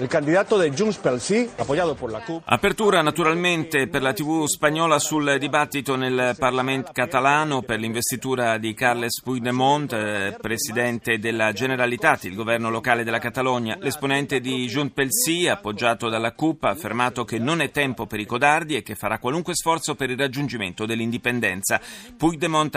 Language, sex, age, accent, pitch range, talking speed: Italian, male, 30-49, native, 115-145 Hz, 150 wpm